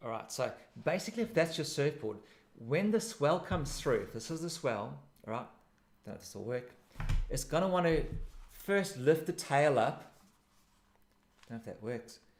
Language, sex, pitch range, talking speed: English, male, 115-160 Hz, 200 wpm